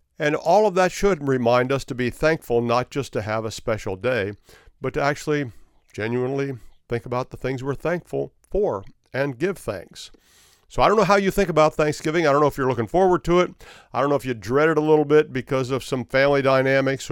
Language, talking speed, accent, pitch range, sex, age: English, 225 wpm, American, 105-145 Hz, male, 50-69